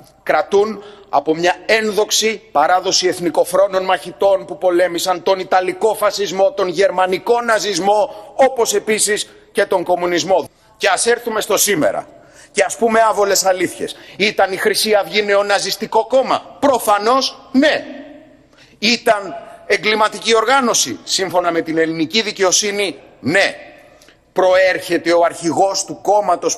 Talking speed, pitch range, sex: 115 wpm, 185-225 Hz, male